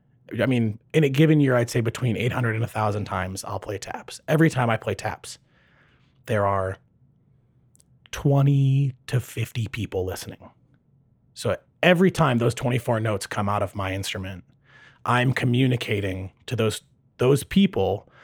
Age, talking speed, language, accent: 30-49, 150 wpm, English, American